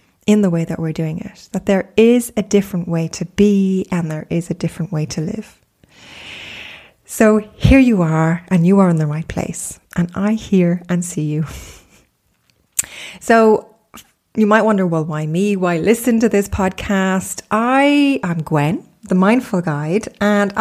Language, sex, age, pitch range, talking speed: English, female, 30-49, 165-210 Hz, 170 wpm